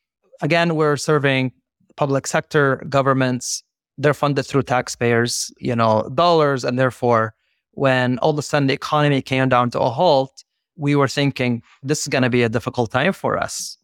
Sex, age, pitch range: male, 30-49, 125-150 Hz